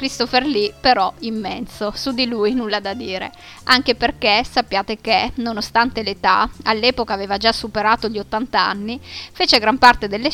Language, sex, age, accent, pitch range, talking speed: Italian, female, 20-39, native, 205-245 Hz, 155 wpm